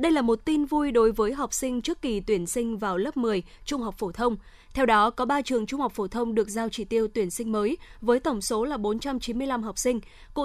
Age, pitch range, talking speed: 20-39, 220-270 Hz, 255 wpm